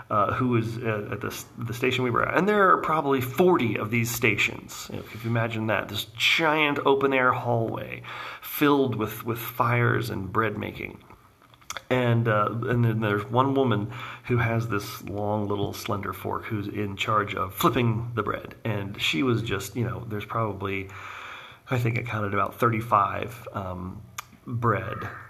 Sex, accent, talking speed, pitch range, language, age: male, American, 170 wpm, 105-125 Hz, English, 40-59